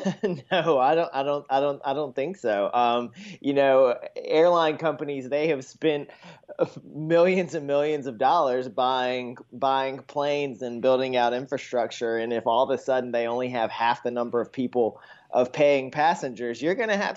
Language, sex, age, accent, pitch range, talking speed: English, male, 20-39, American, 120-145 Hz, 180 wpm